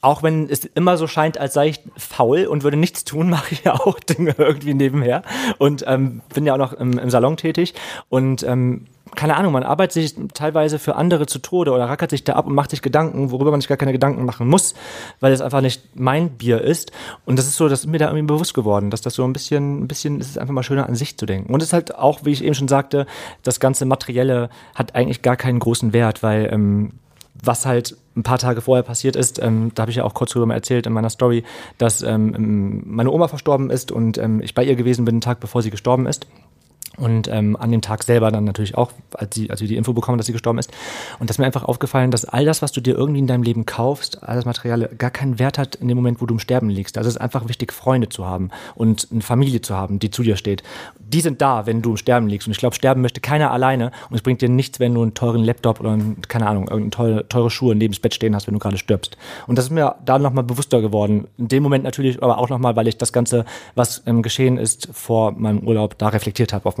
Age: 30-49